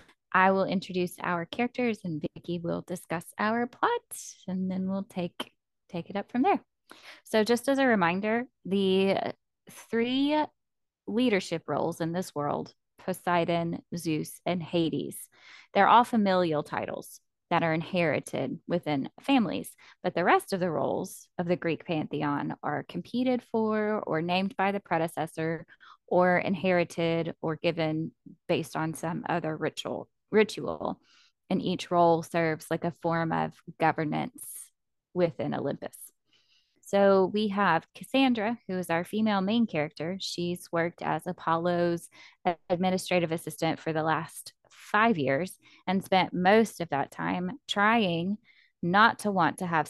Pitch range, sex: 165-200 Hz, female